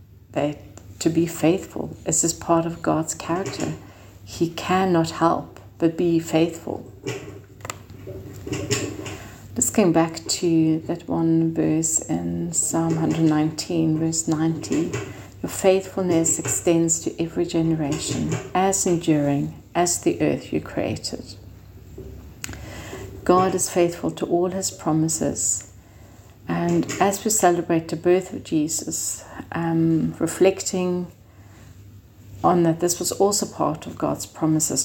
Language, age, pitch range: English, 70-89, 105-170 Hz